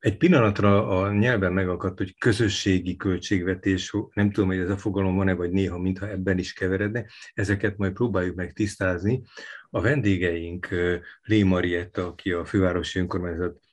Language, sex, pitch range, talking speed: Hungarian, male, 90-105 Hz, 150 wpm